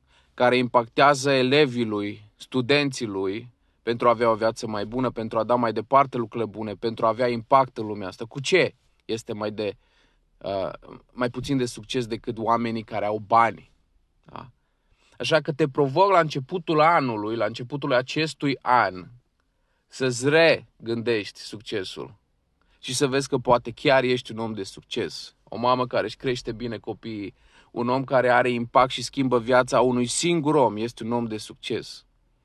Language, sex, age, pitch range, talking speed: Romanian, male, 30-49, 110-130 Hz, 165 wpm